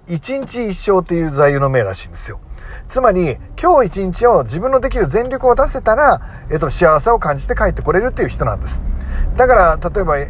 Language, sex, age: Japanese, male, 40-59